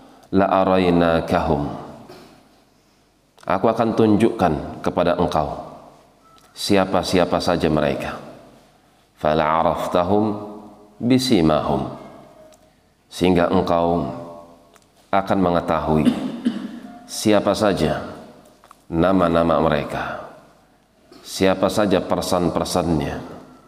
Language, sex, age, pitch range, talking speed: Indonesian, male, 40-59, 80-100 Hz, 60 wpm